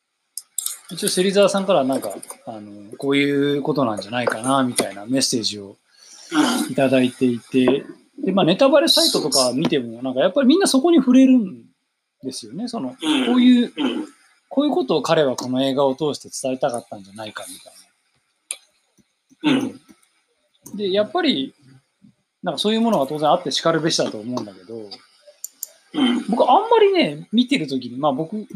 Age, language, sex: 20-39, Japanese, male